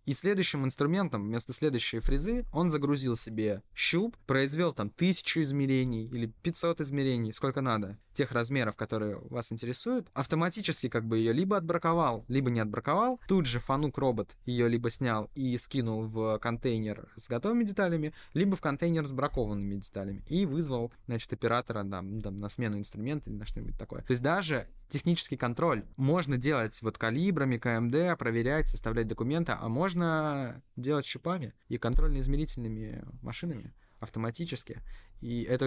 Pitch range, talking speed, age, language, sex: 110-145 Hz, 150 wpm, 20-39, Russian, male